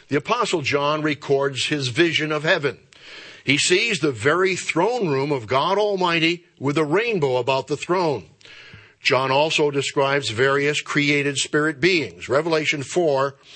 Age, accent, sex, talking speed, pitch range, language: 60-79, American, male, 140 wpm, 140-165 Hz, English